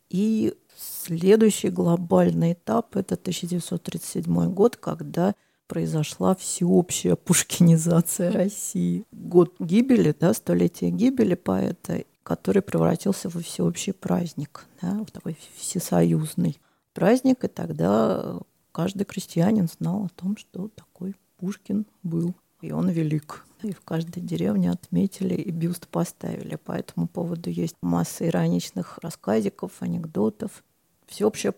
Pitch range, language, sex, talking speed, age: 165-205 Hz, Russian, female, 115 wpm, 40-59